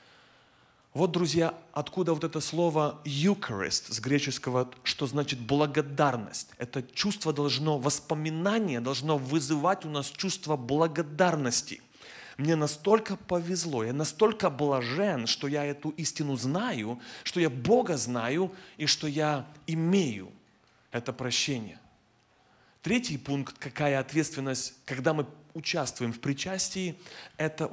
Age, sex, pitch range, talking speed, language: 30-49, male, 130-165 Hz, 115 wpm, Russian